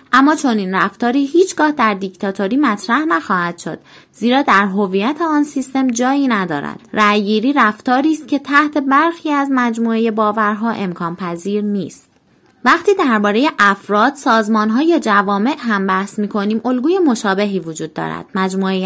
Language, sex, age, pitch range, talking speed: Persian, female, 20-39, 195-270 Hz, 135 wpm